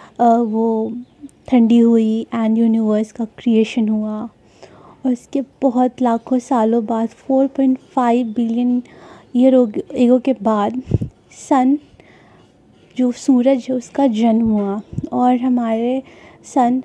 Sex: female